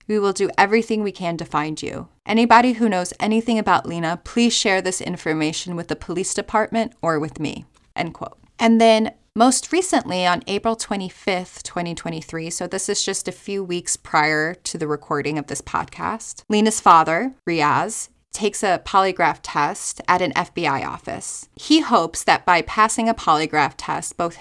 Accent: American